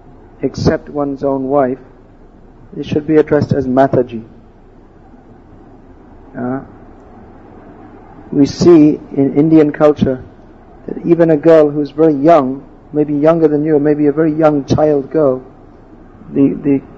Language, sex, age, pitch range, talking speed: English, male, 50-69, 130-150 Hz, 125 wpm